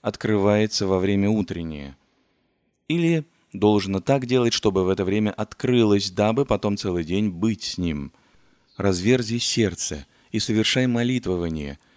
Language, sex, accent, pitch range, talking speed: Russian, male, native, 95-120 Hz, 125 wpm